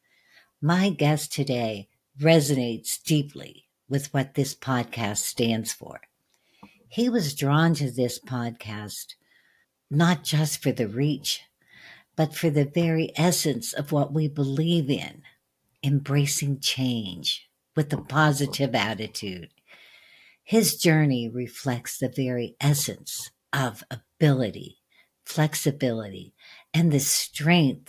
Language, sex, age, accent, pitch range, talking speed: English, female, 60-79, American, 130-160 Hz, 110 wpm